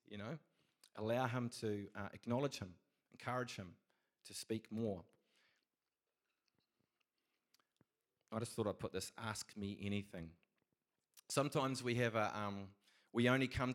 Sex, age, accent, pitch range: male, 30-49, Australian, 105-130 Hz